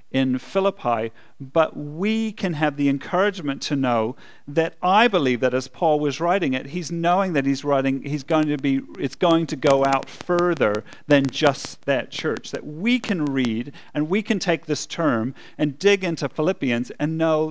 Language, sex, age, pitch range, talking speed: English, male, 40-59, 135-175 Hz, 185 wpm